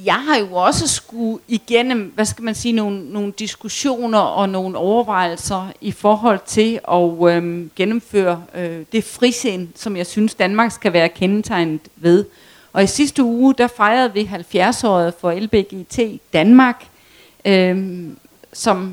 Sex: female